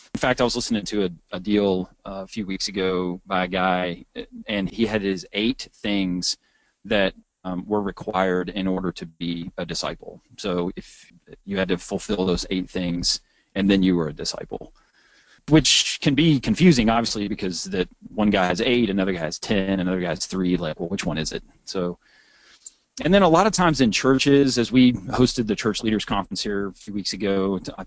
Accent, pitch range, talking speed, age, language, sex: American, 90-110 Hz, 205 wpm, 30-49, English, male